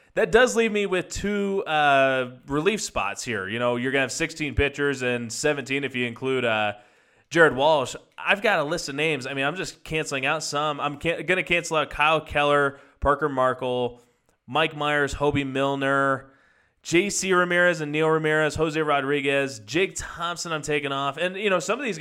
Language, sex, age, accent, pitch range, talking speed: English, male, 20-39, American, 125-155 Hz, 190 wpm